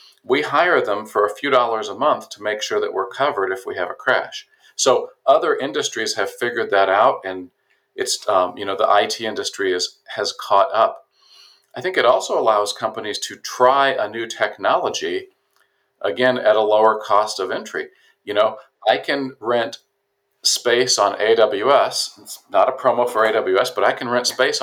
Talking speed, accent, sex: 185 wpm, American, male